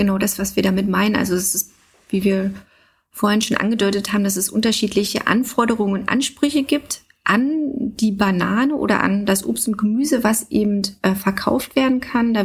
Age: 30-49